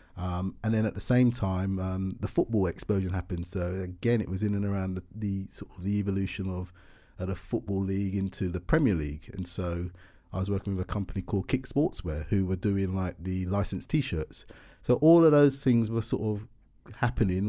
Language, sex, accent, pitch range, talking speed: English, male, British, 90-105 Hz, 210 wpm